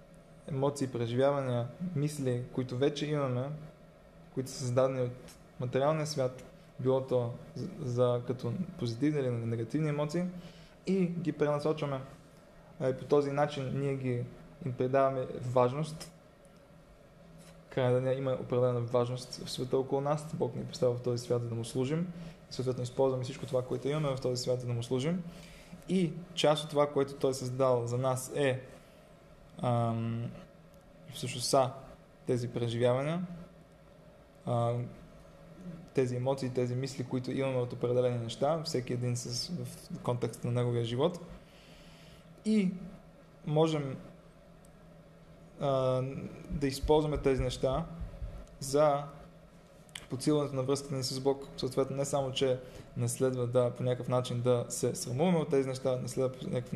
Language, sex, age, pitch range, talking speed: Bulgarian, male, 20-39, 125-160 Hz, 135 wpm